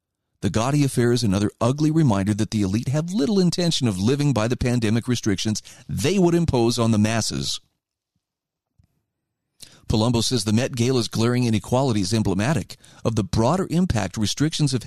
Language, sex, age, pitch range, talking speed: English, male, 40-59, 110-155 Hz, 160 wpm